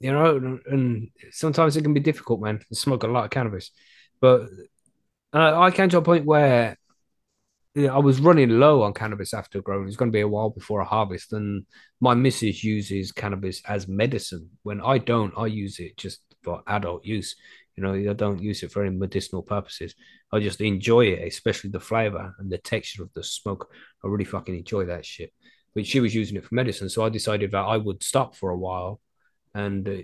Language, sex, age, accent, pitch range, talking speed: English, male, 30-49, British, 100-125 Hz, 210 wpm